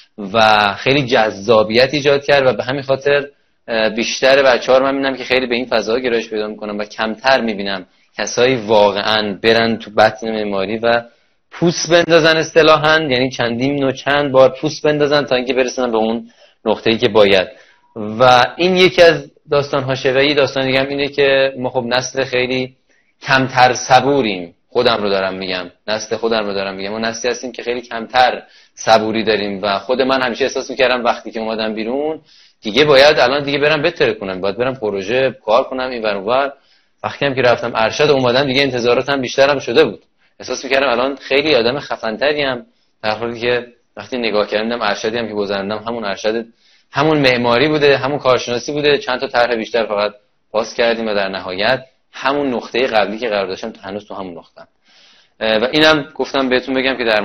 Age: 20-39